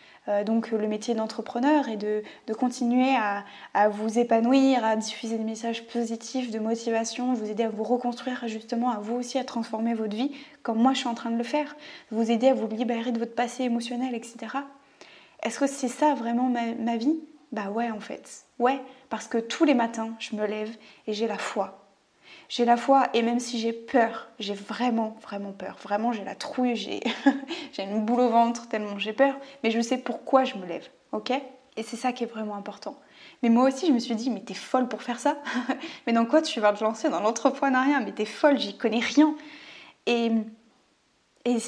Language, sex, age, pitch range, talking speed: French, female, 20-39, 225-270 Hz, 210 wpm